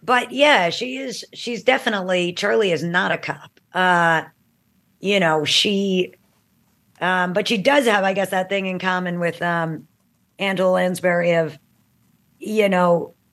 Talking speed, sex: 150 wpm, female